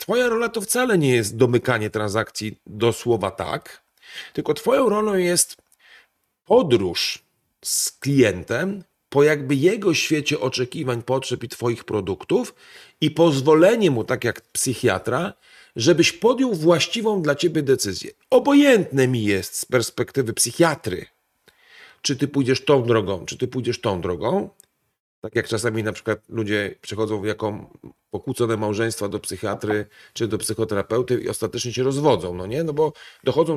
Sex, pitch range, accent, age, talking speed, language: male, 115-155 Hz, native, 40-59, 140 wpm, Polish